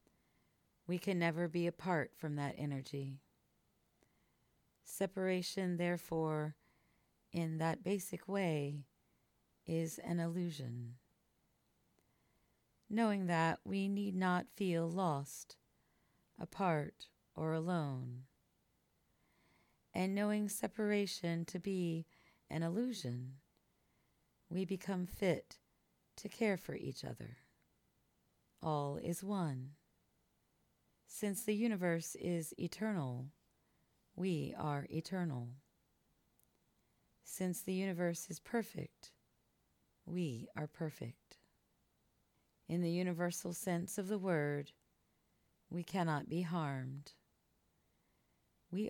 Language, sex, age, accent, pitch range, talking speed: English, female, 40-59, American, 155-185 Hz, 90 wpm